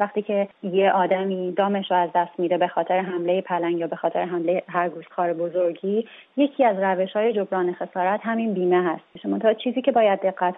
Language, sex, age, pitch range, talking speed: Persian, female, 30-49, 180-210 Hz, 195 wpm